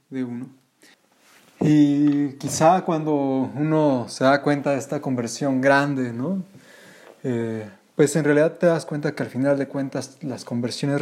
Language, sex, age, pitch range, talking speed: Spanish, male, 20-39, 130-150 Hz, 150 wpm